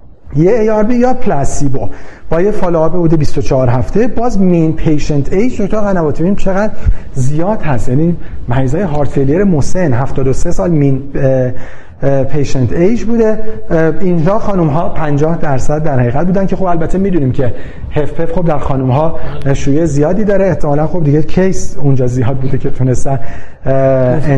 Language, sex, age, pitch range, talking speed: Persian, male, 40-59, 140-190 Hz, 150 wpm